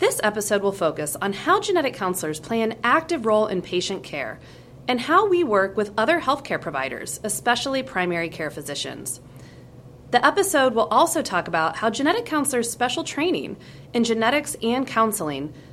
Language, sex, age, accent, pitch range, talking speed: English, female, 30-49, American, 170-255 Hz, 160 wpm